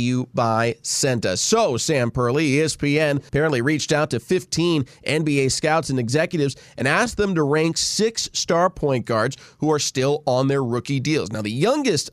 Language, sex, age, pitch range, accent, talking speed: English, male, 30-49, 120-150 Hz, American, 175 wpm